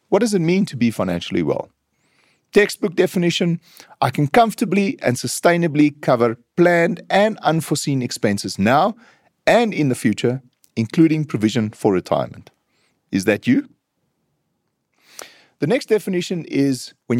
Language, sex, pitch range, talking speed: English, male, 115-175 Hz, 130 wpm